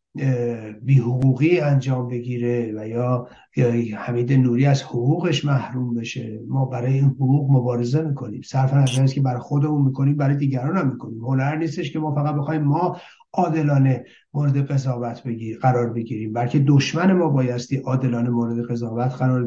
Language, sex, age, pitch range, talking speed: Persian, male, 60-79, 125-150 Hz, 155 wpm